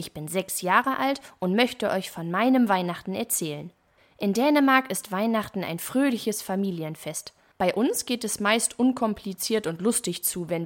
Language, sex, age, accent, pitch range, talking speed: German, female, 20-39, German, 175-240 Hz, 165 wpm